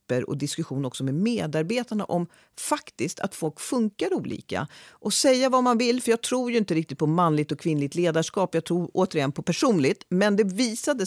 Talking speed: 190 wpm